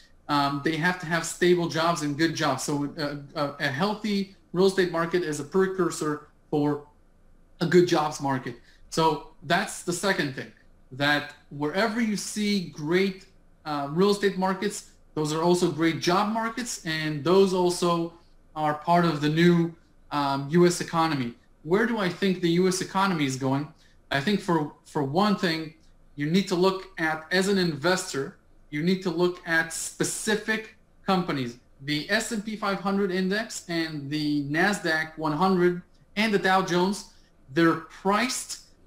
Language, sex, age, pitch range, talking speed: English, male, 30-49, 150-190 Hz, 155 wpm